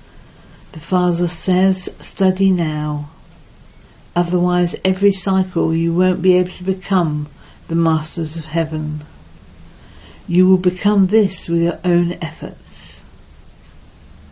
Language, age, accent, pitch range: English, 50-69, British, 155-190 Hz